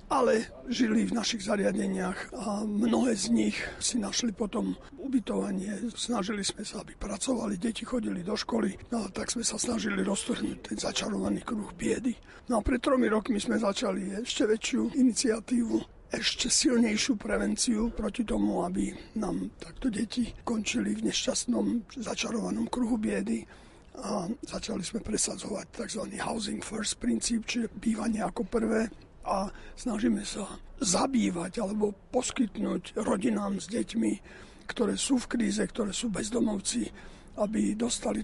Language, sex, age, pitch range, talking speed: Slovak, male, 50-69, 205-245 Hz, 135 wpm